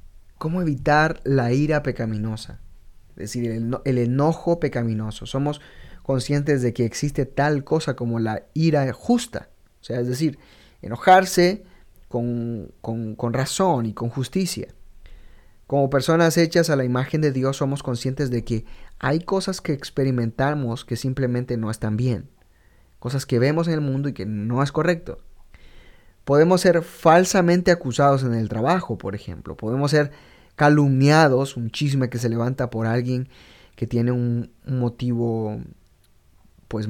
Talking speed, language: 150 wpm, English